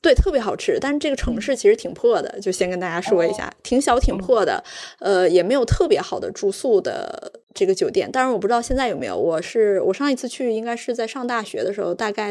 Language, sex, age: Chinese, female, 20-39